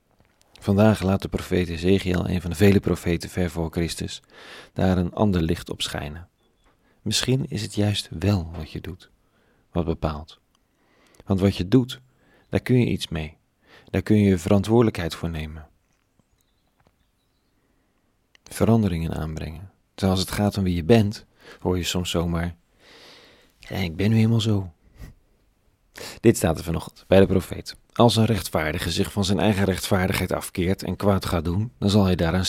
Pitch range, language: 85-105 Hz, Dutch